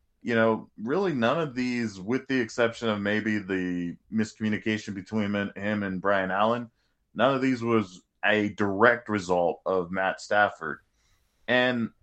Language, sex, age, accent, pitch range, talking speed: English, male, 20-39, American, 100-120 Hz, 145 wpm